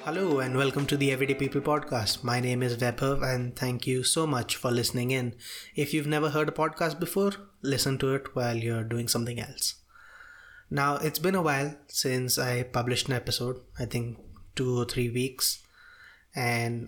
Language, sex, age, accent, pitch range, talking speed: English, male, 20-39, Indian, 125-150 Hz, 185 wpm